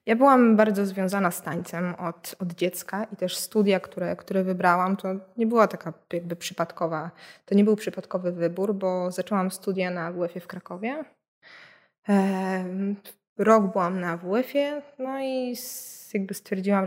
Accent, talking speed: native, 140 wpm